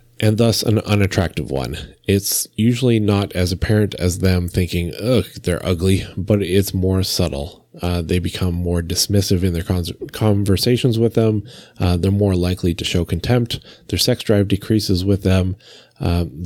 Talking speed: 160 wpm